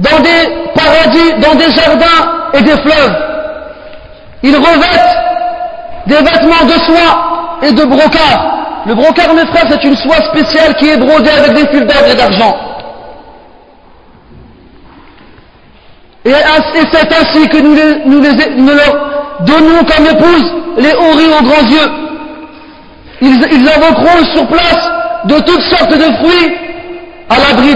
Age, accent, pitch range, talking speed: 40-59, French, 290-330 Hz, 140 wpm